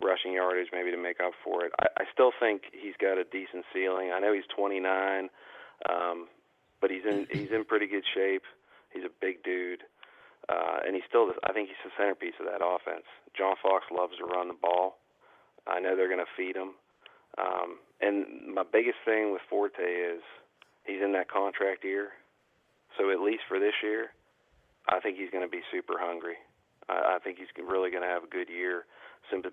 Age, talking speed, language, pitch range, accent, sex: 40-59, 205 wpm, English, 90-100 Hz, American, male